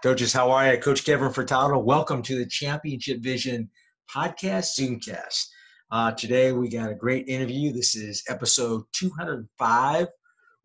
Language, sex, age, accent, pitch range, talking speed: English, male, 50-69, American, 120-145 Hz, 140 wpm